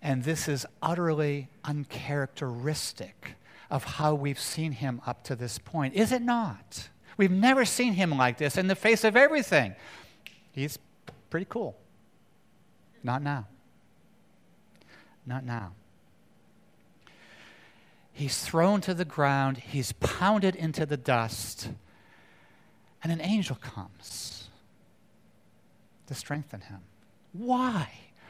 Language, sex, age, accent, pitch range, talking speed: English, male, 50-69, American, 135-225 Hz, 110 wpm